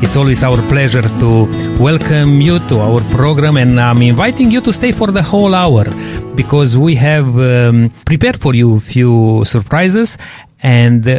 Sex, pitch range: male, 120-160 Hz